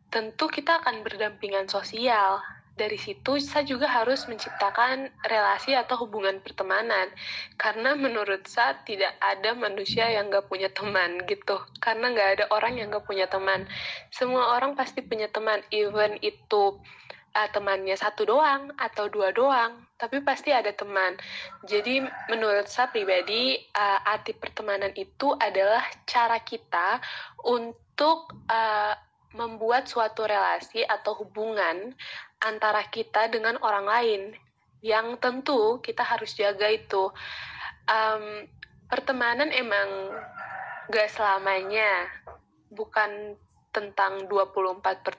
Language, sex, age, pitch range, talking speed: Indonesian, female, 10-29, 200-245 Hz, 120 wpm